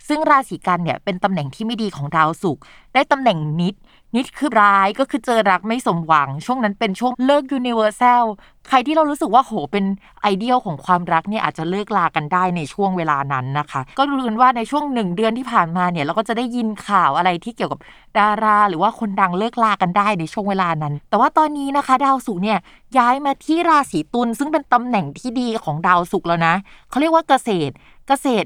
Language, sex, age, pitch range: Thai, female, 20-39, 185-250 Hz